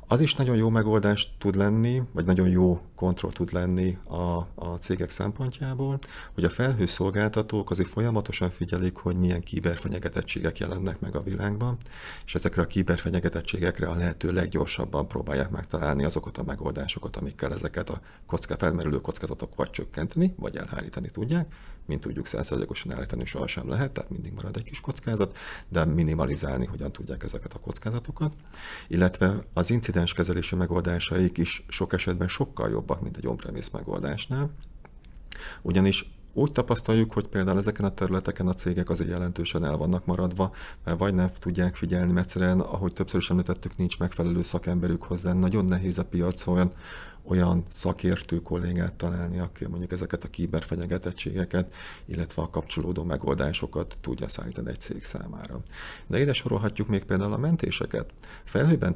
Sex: male